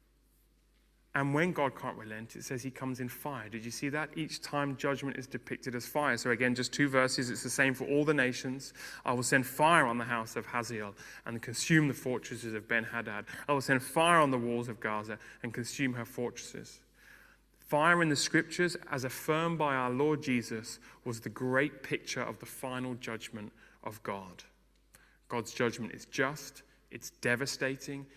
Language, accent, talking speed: English, British, 185 wpm